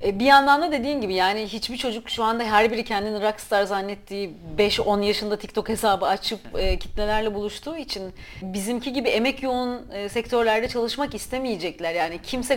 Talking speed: 155 wpm